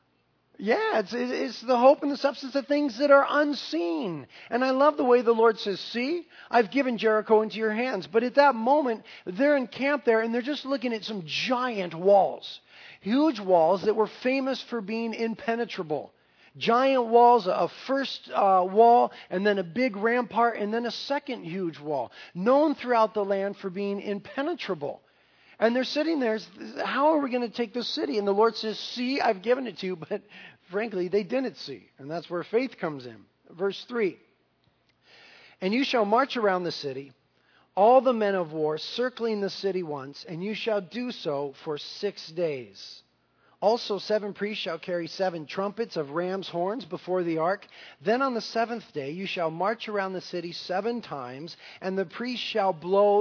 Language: English